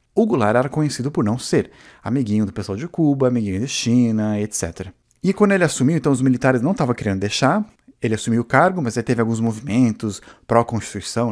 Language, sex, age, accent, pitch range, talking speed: Portuguese, male, 30-49, Brazilian, 105-135 Hz, 195 wpm